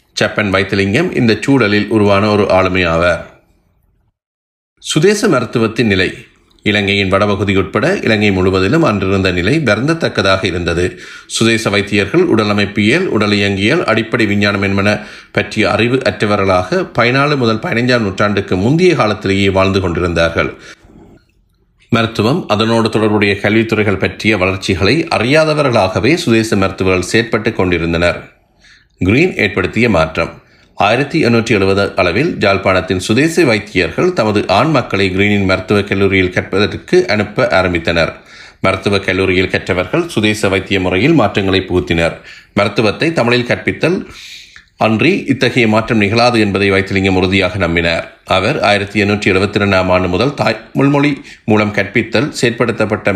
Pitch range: 95-115 Hz